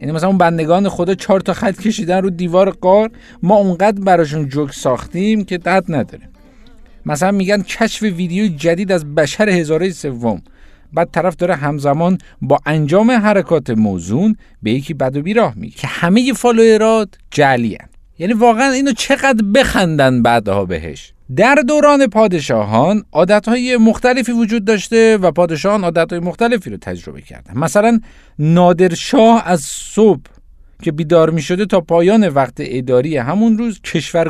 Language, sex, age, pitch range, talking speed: Persian, male, 50-69, 155-220 Hz, 145 wpm